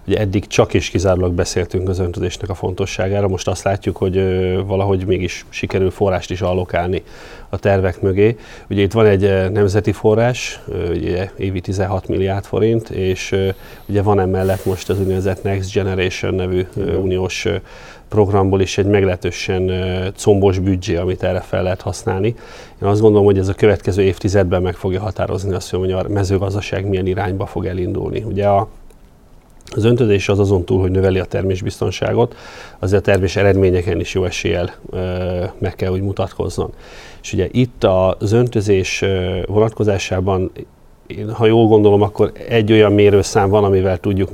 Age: 30-49